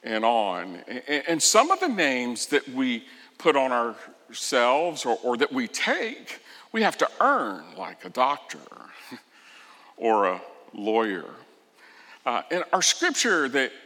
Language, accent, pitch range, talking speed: English, American, 120-185 Hz, 140 wpm